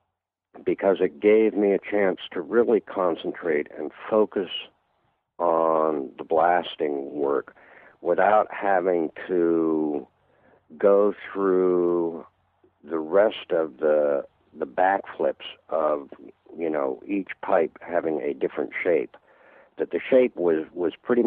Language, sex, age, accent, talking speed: English, male, 60-79, American, 115 wpm